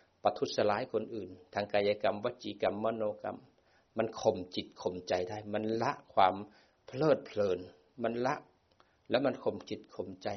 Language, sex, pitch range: Thai, male, 90-120 Hz